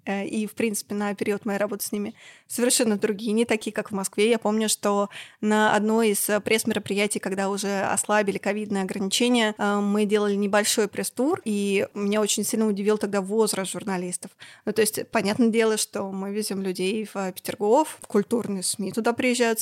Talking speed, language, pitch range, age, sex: 170 wpm, Russian, 200-225 Hz, 20-39, female